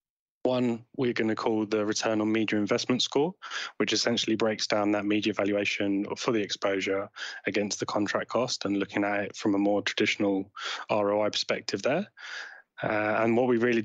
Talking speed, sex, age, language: 180 wpm, male, 10-29, English